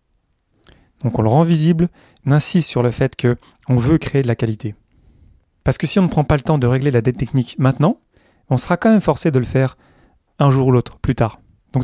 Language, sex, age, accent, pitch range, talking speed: French, male, 30-49, French, 115-145 Hz, 230 wpm